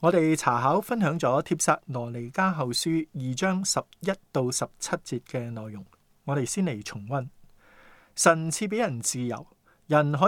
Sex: male